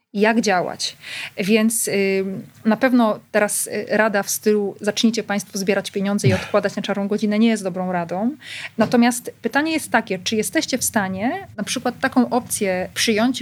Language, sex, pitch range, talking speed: Polish, female, 200-240 Hz, 160 wpm